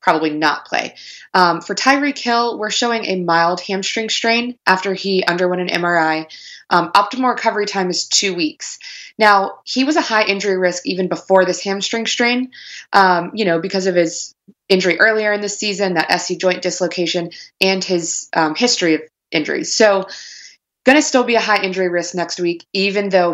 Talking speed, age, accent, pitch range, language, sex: 185 wpm, 20-39, American, 170-210 Hz, English, female